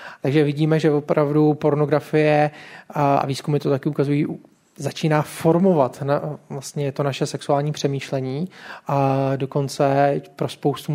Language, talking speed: Czech, 125 wpm